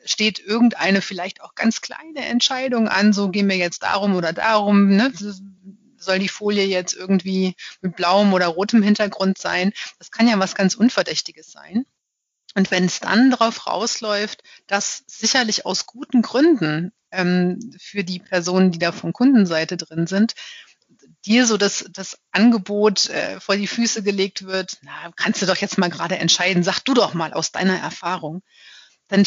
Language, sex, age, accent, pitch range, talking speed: German, female, 30-49, German, 185-225 Hz, 165 wpm